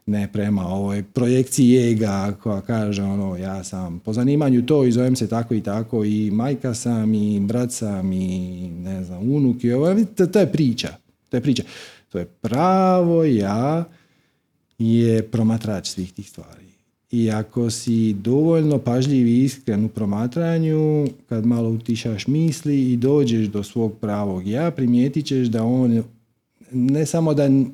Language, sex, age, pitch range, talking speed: Croatian, male, 40-59, 105-135 Hz, 160 wpm